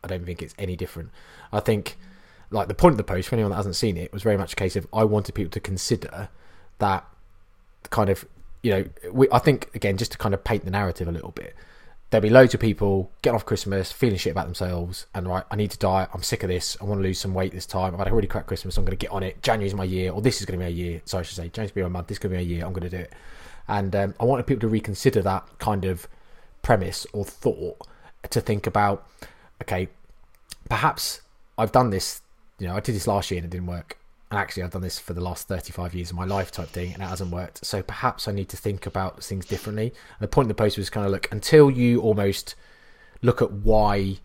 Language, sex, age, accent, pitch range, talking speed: English, male, 20-39, British, 90-105 Hz, 275 wpm